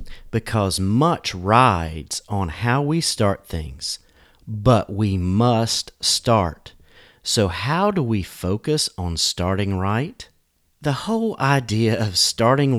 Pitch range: 95-140 Hz